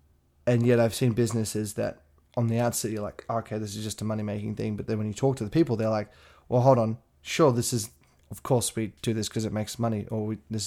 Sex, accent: male, Australian